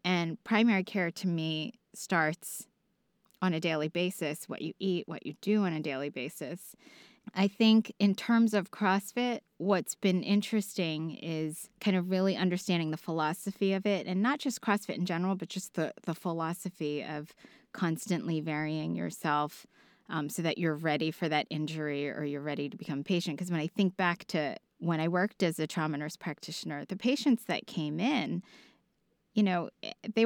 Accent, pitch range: American, 160-210 Hz